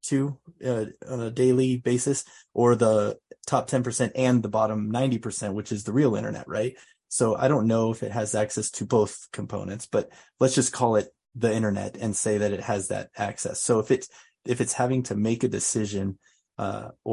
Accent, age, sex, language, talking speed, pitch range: American, 30-49, male, English, 205 wpm, 105-125 Hz